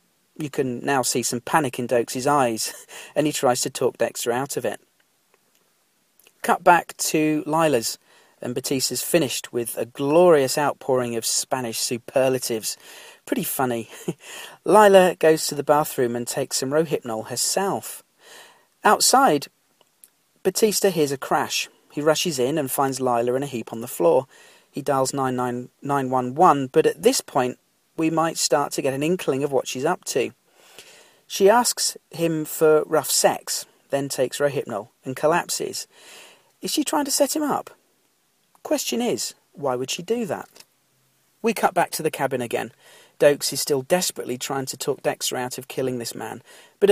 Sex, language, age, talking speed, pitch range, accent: male, English, 40-59, 165 wpm, 130-180 Hz, British